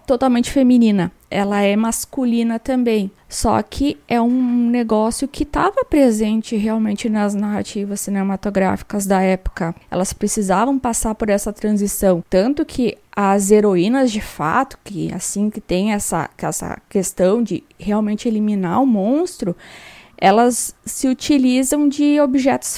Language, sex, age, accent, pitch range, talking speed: Portuguese, female, 20-39, Brazilian, 205-250 Hz, 130 wpm